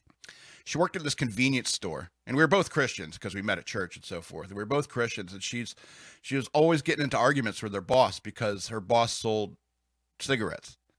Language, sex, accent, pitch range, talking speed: English, male, American, 95-135 Hz, 215 wpm